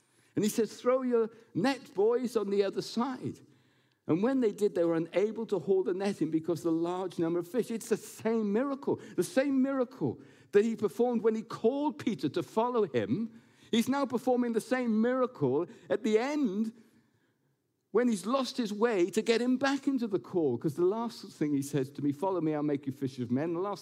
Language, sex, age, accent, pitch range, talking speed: English, male, 50-69, British, 150-235 Hz, 215 wpm